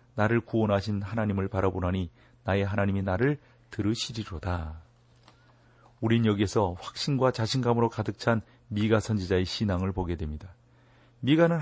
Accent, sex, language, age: native, male, Korean, 40-59